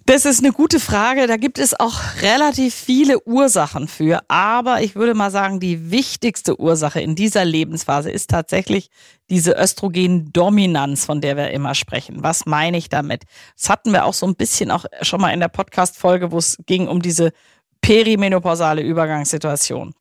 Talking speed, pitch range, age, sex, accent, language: 170 wpm, 165-220 Hz, 40-59, female, German, German